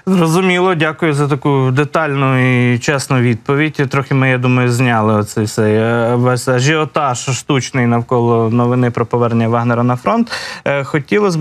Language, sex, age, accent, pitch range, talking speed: Ukrainian, male, 20-39, native, 120-145 Hz, 135 wpm